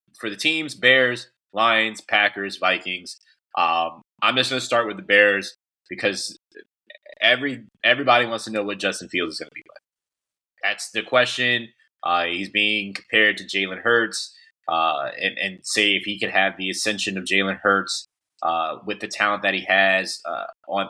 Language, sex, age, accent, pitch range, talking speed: English, male, 20-39, American, 95-110 Hz, 170 wpm